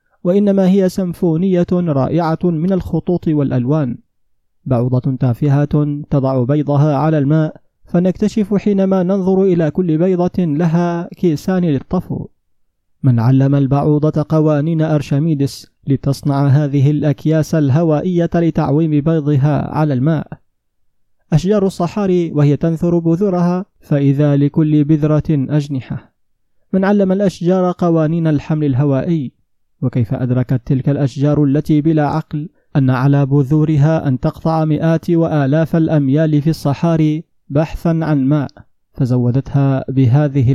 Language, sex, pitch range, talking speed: Arabic, male, 140-170 Hz, 105 wpm